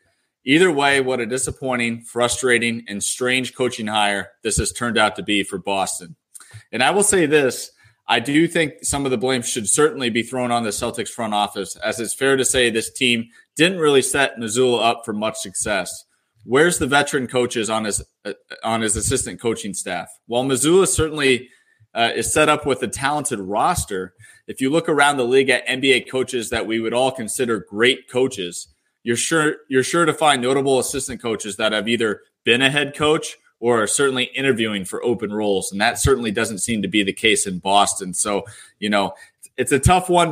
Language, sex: English, male